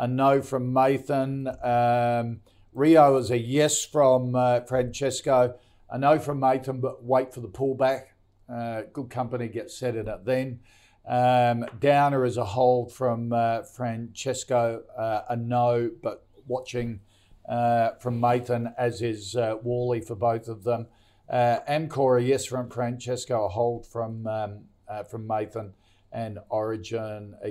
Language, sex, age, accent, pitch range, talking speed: English, male, 50-69, Australian, 115-135 Hz, 150 wpm